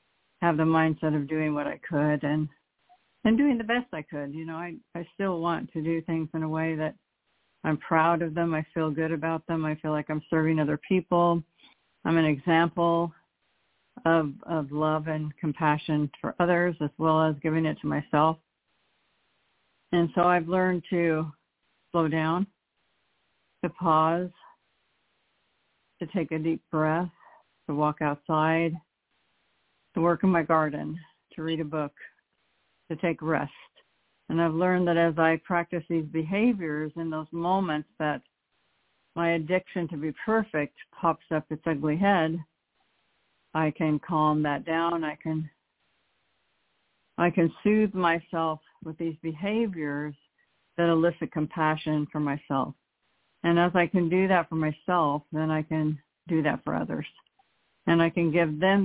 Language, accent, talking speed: English, American, 155 wpm